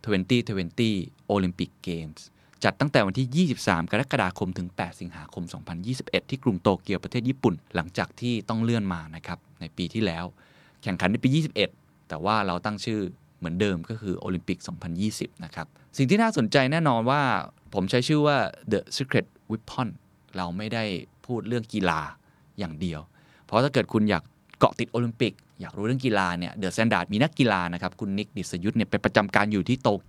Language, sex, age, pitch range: Thai, male, 20-39, 90-120 Hz